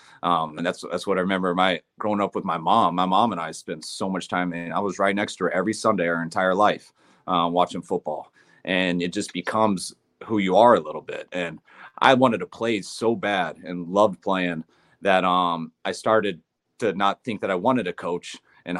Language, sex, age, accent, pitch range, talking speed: English, male, 30-49, American, 90-100 Hz, 220 wpm